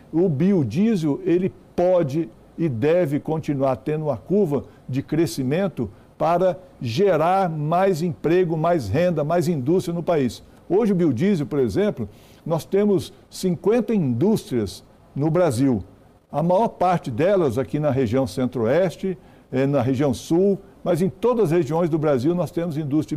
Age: 60-79